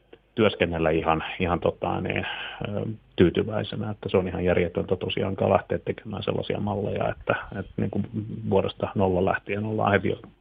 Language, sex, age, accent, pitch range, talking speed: Finnish, male, 30-49, native, 95-110 Hz, 140 wpm